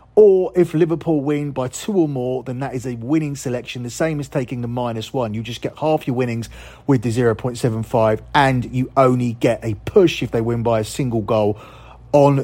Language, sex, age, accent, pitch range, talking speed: English, male, 30-49, British, 120-145 Hz, 210 wpm